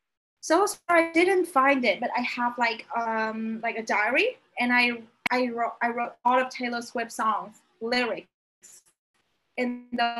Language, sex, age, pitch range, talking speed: Vietnamese, female, 20-39, 225-275 Hz, 170 wpm